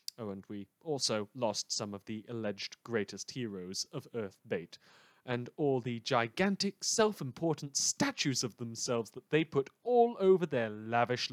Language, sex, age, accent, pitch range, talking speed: English, male, 30-49, British, 120-175 Hz, 155 wpm